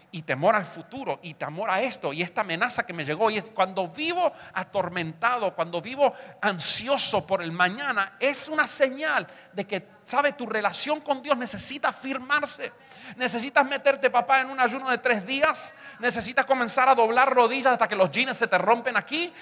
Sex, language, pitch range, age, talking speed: male, English, 185-260 Hz, 40-59, 180 wpm